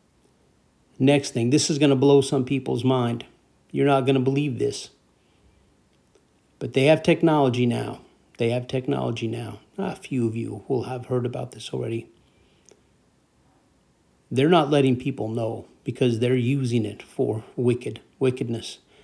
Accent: American